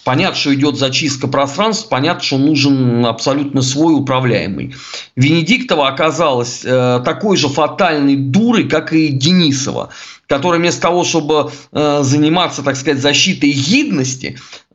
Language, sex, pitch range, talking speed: Russian, male, 135-170 Hz, 120 wpm